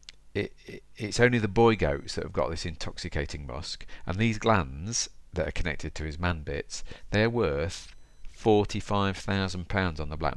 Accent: British